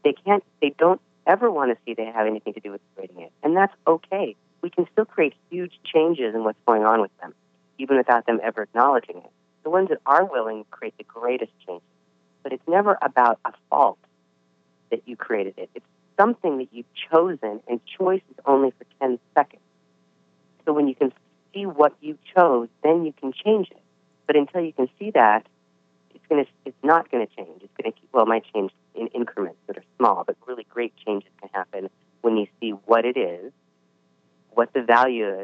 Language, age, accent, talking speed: English, 40-59, American, 205 wpm